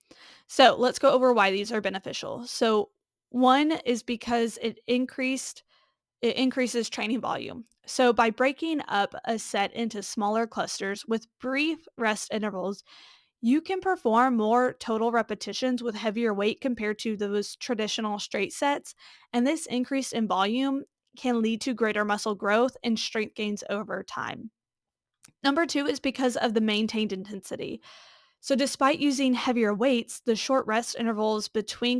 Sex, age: female, 20-39